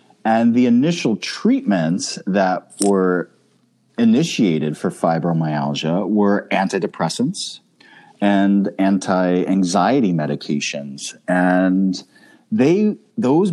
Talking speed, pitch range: 75 wpm, 85-125 Hz